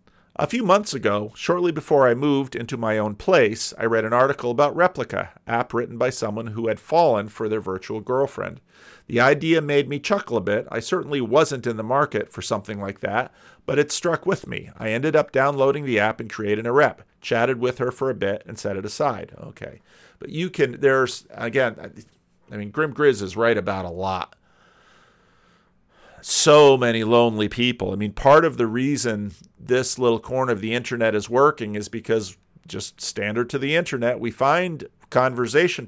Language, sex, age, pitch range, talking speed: English, male, 40-59, 110-140 Hz, 190 wpm